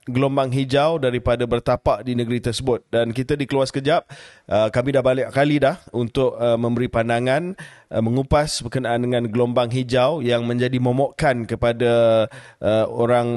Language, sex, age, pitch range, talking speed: Malay, male, 30-49, 115-135 Hz, 135 wpm